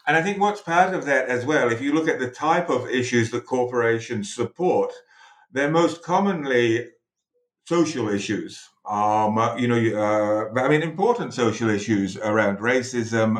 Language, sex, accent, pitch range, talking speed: English, male, British, 115-145 Hz, 160 wpm